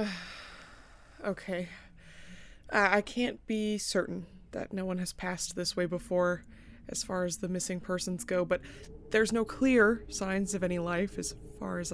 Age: 20-39